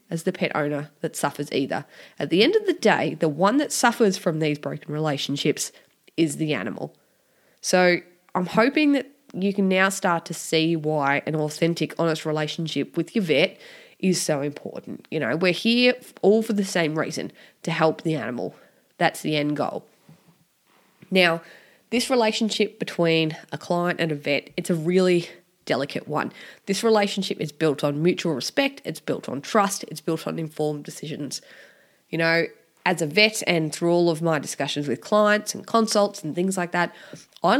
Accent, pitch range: Australian, 155-200 Hz